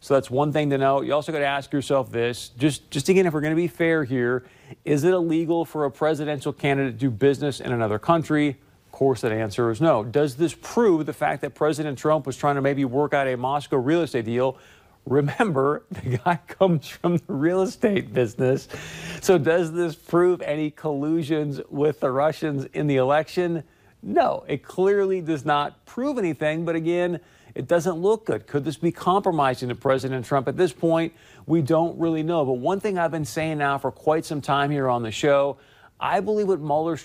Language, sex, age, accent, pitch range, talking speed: English, male, 40-59, American, 130-165 Hz, 205 wpm